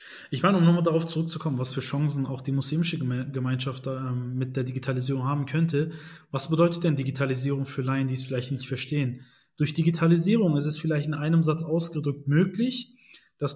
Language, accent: German, German